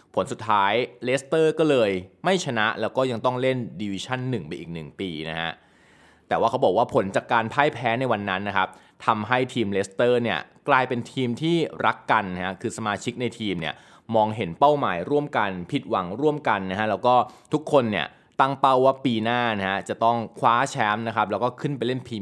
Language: Thai